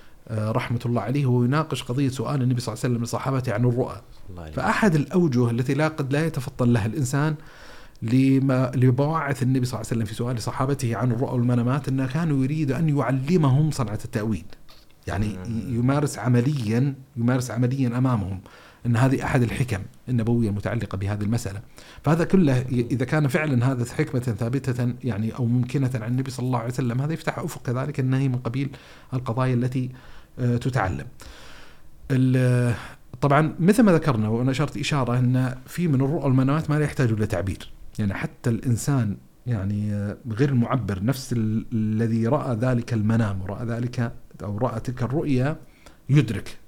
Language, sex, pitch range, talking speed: Arabic, male, 115-135 Hz, 150 wpm